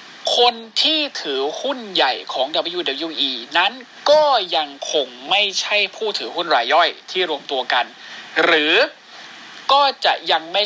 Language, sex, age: Thai, male, 20-39